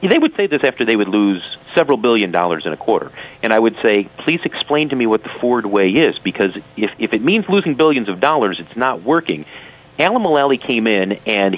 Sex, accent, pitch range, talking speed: male, American, 100-135 Hz, 230 wpm